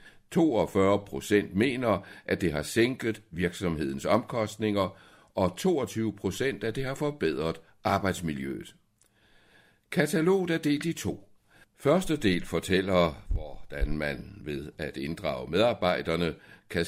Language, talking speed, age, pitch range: Danish, 115 wpm, 60-79, 80-110 Hz